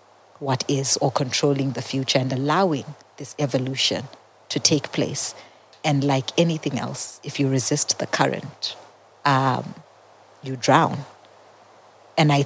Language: English